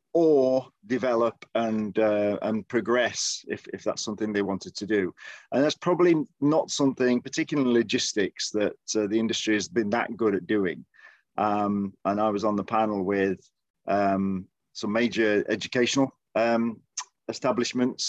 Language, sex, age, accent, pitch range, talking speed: English, male, 40-59, British, 105-130 Hz, 150 wpm